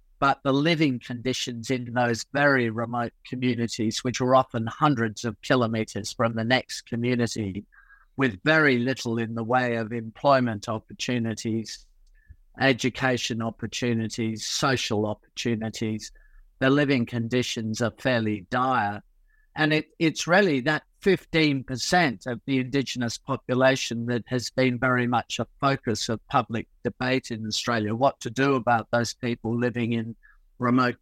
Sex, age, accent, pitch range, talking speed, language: male, 50-69, British, 115-135 Hz, 135 wpm, English